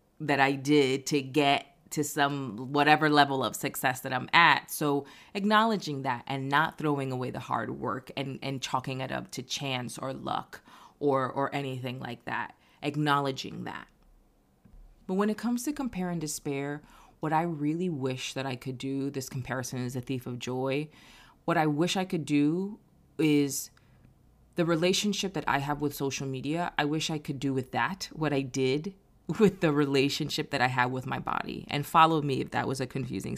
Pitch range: 135-160 Hz